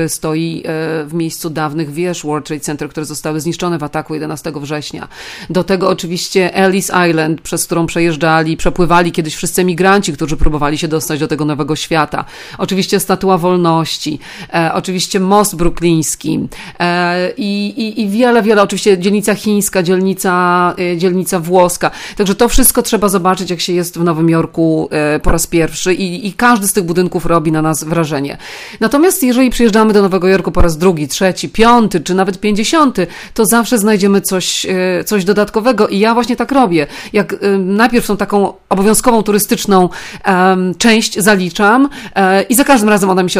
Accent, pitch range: native, 170-215 Hz